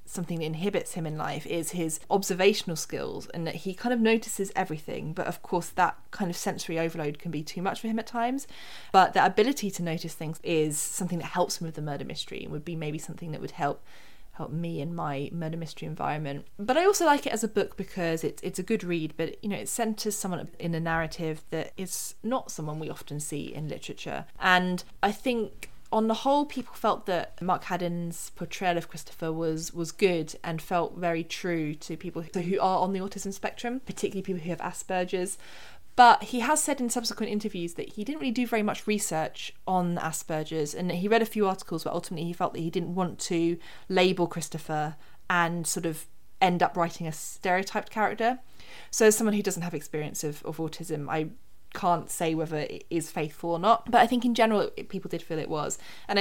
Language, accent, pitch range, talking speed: English, British, 165-210 Hz, 215 wpm